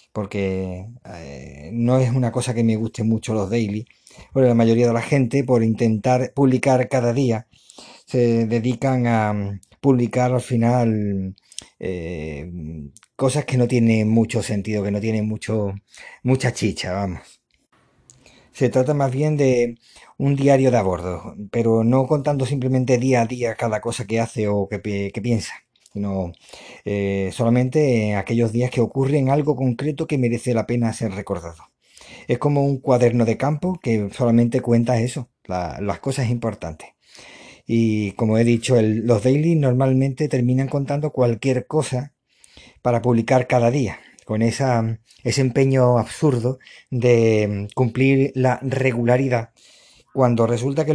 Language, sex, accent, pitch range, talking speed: Spanish, male, Spanish, 110-130 Hz, 145 wpm